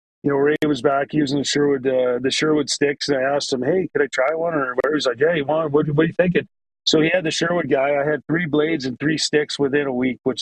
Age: 30-49